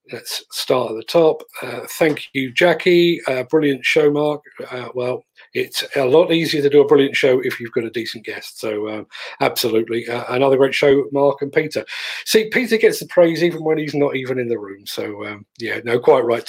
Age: 40-59